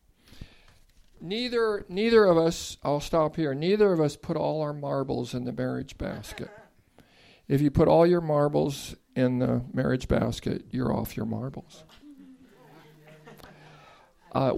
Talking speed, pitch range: 135 wpm, 135-185 Hz